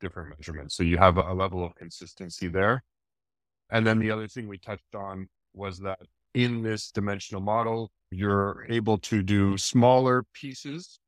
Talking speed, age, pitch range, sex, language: 160 wpm, 30-49, 95-110 Hz, male, English